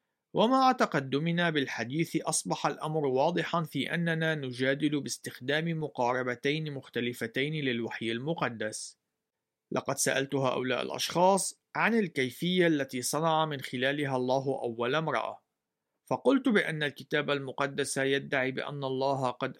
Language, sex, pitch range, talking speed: Arabic, male, 130-180 Hz, 105 wpm